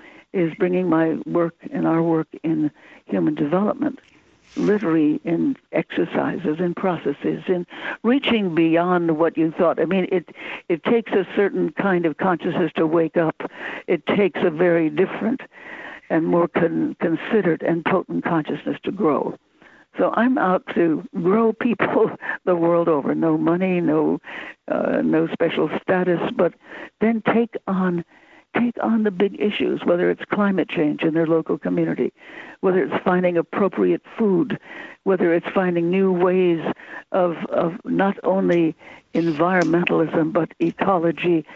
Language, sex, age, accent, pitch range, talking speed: English, female, 60-79, American, 165-195 Hz, 140 wpm